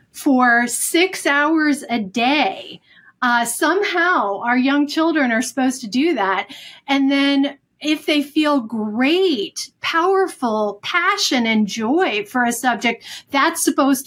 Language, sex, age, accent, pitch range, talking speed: English, female, 40-59, American, 230-285 Hz, 130 wpm